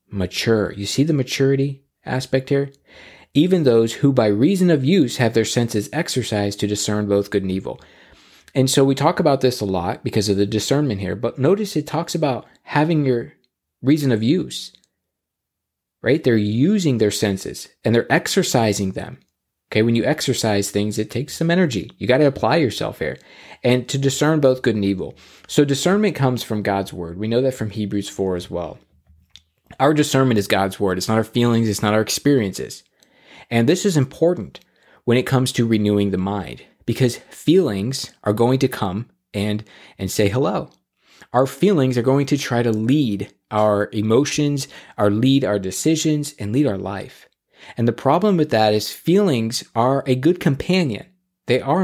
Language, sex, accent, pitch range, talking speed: English, male, American, 105-140 Hz, 180 wpm